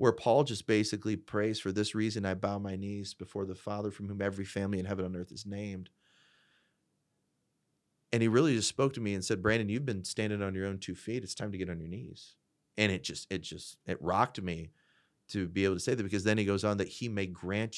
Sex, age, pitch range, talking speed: male, 30-49, 95-110 Hz, 245 wpm